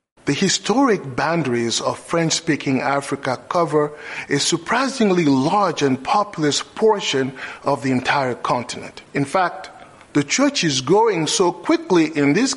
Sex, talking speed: male, 130 wpm